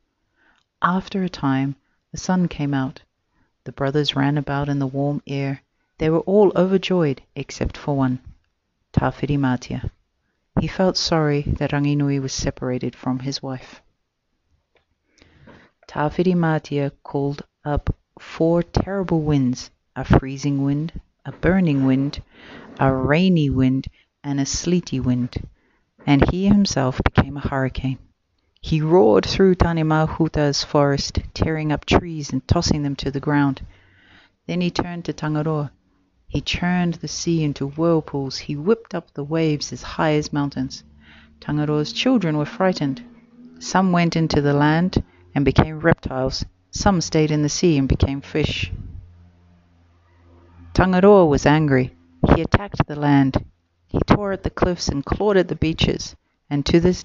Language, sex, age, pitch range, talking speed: English, female, 40-59, 130-165 Hz, 140 wpm